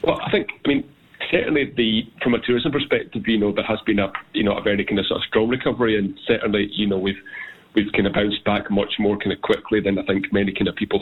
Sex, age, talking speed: male, 30-49, 265 wpm